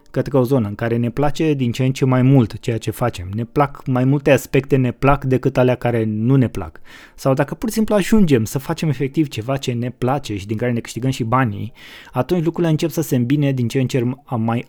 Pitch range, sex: 110-135 Hz, male